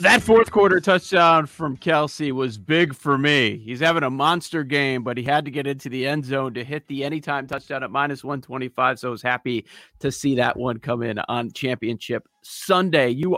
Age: 40-59